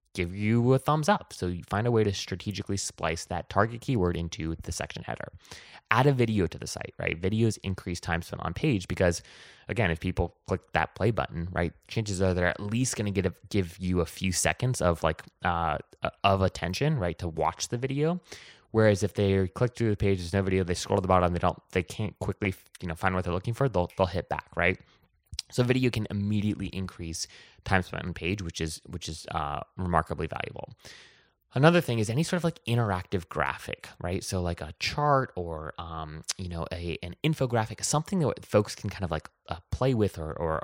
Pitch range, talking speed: 85-110 Hz, 215 wpm